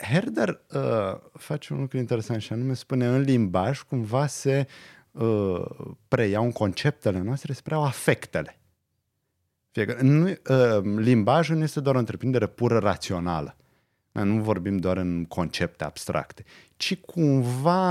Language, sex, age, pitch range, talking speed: Romanian, male, 30-49, 105-140 Hz, 125 wpm